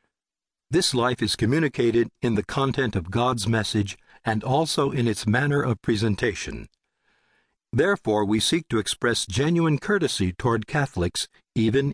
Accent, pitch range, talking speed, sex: American, 110-140 Hz, 135 wpm, male